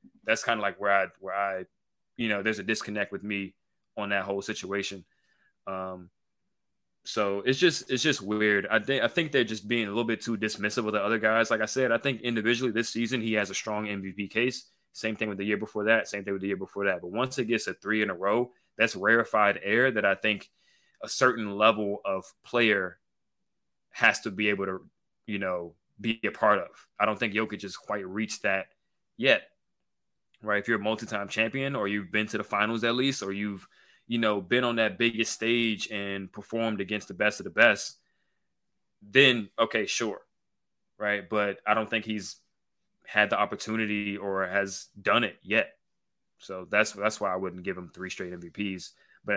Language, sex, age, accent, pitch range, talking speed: English, male, 20-39, American, 100-115 Hz, 205 wpm